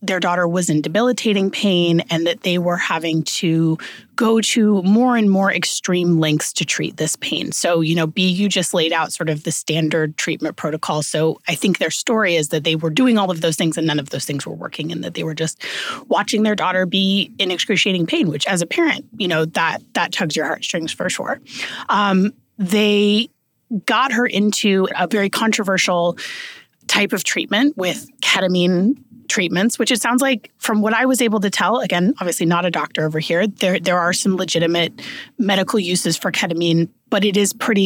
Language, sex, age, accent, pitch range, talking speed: English, female, 30-49, American, 165-210 Hz, 205 wpm